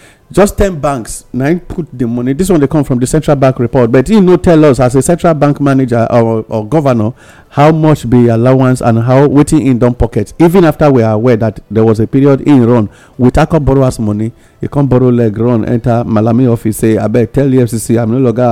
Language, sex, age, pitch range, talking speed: English, male, 50-69, 125-185 Hz, 235 wpm